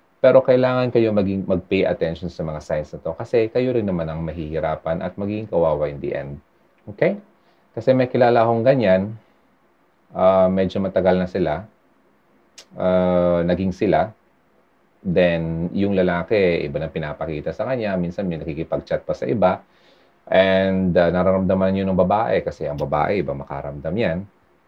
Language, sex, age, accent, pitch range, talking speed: Filipino, male, 30-49, native, 85-110 Hz, 155 wpm